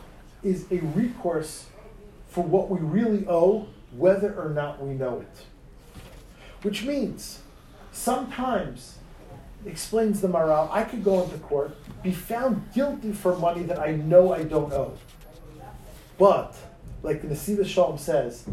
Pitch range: 155-205 Hz